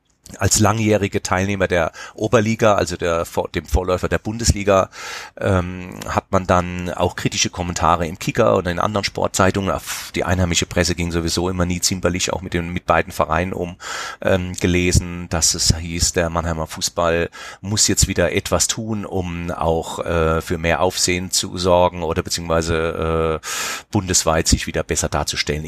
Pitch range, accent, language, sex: 85-105 Hz, German, German, male